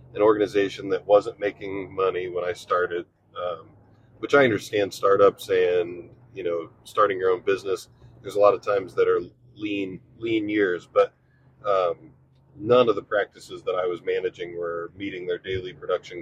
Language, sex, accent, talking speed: English, male, American, 170 wpm